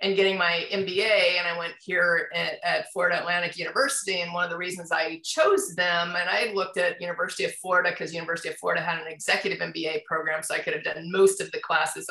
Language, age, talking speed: English, 30-49, 230 wpm